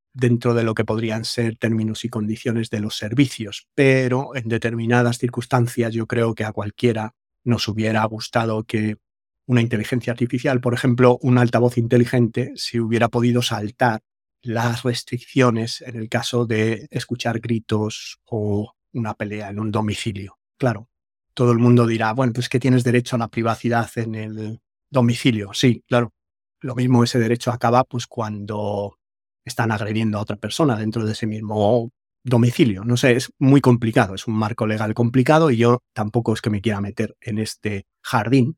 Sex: male